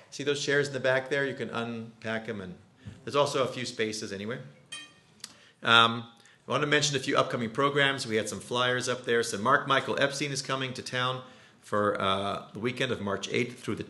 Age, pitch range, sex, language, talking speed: 40-59, 105-135 Hz, male, English, 215 wpm